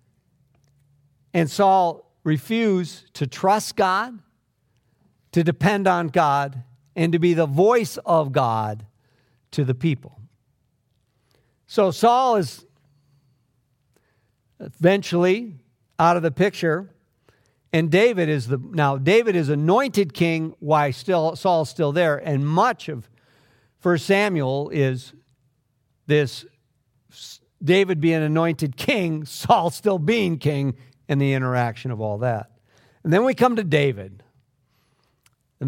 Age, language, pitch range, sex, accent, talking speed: 50-69, English, 125-180 Hz, male, American, 120 wpm